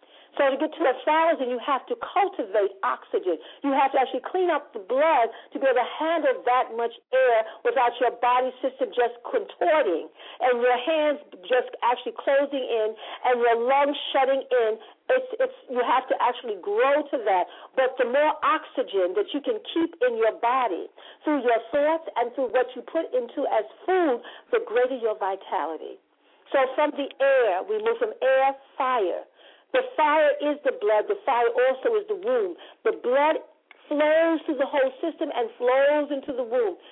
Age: 50-69